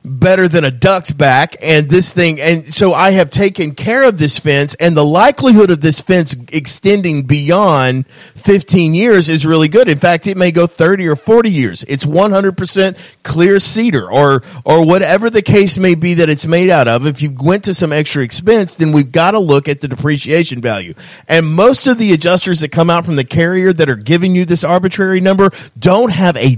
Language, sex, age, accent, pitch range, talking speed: English, male, 50-69, American, 150-200 Hz, 210 wpm